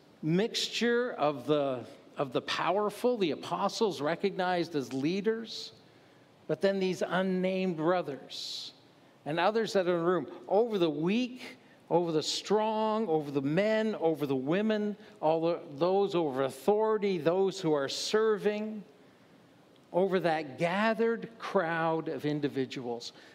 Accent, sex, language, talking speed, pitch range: American, male, English, 125 wpm, 140-195 Hz